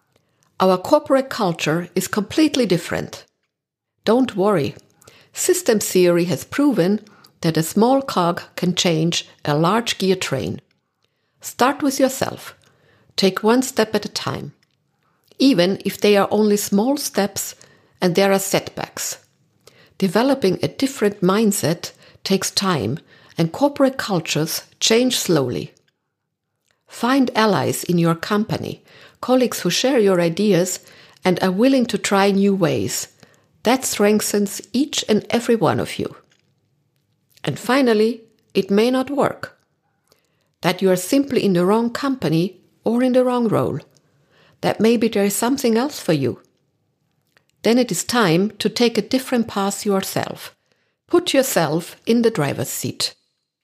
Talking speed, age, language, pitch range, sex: 135 wpm, 50-69, German, 175-235 Hz, female